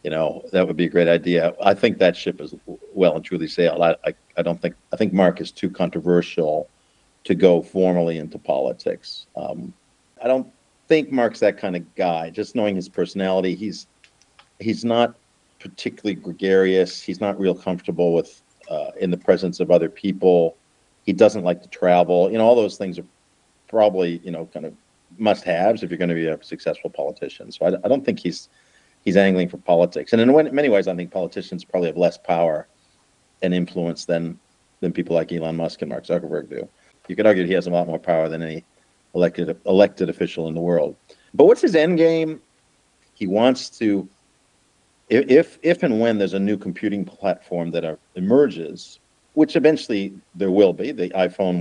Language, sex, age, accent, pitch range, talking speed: English, male, 50-69, American, 85-100 Hz, 190 wpm